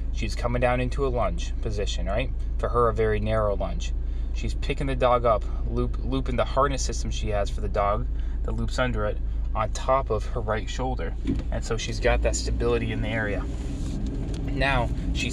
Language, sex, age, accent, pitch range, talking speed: English, male, 20-39, American, 100-125 Hz, 190 wpm